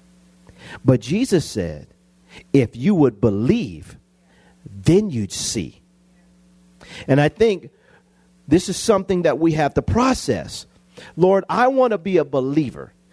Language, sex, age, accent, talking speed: English, male, 40-59, American, 130 wpm